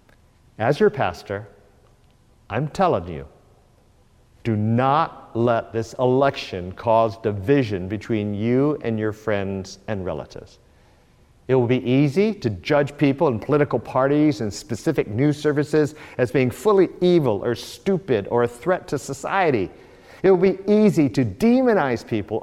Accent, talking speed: American, 140 wpm